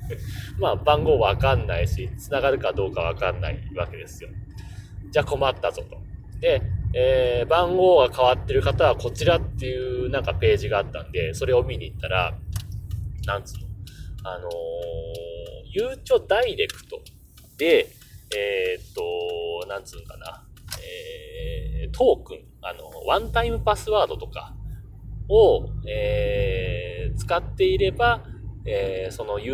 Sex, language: male, Japanese